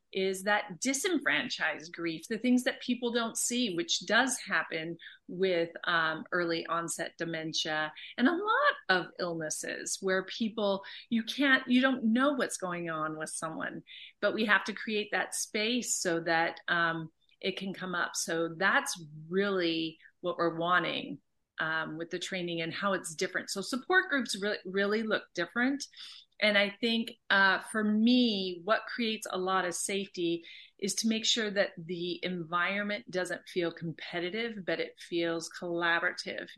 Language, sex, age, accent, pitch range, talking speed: English, female, 40-59, American, 175-230 Hz, 155 wpm